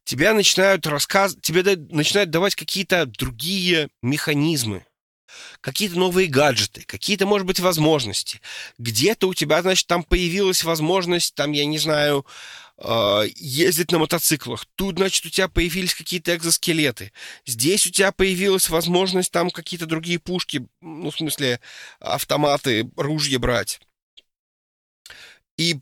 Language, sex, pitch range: Russian, male, 140-180 Hz